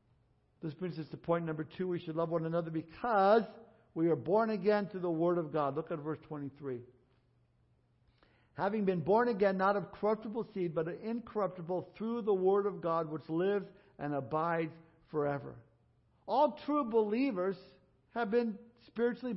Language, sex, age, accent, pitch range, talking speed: English, male, 60-79, American, 160-210 Hz, 160 wpm